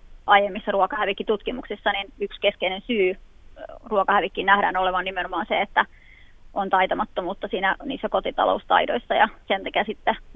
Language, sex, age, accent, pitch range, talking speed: Finnish, female, 20-39, native, 195-215 Hz, 120 wpm